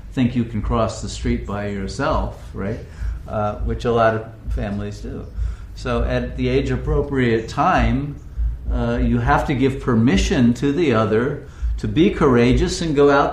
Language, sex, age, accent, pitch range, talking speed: English, male, 50-69, American, 110-135 Hz, 160 wpm